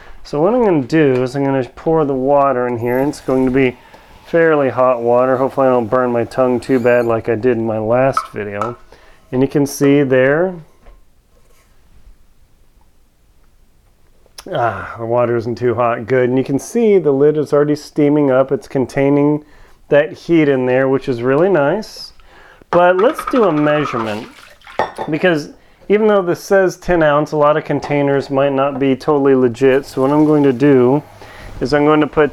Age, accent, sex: 40-59, American, male